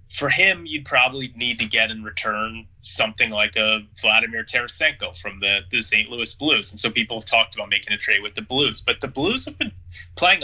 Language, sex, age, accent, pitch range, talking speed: English, male, 30-49, American, 100-120 Hz, 220 wpm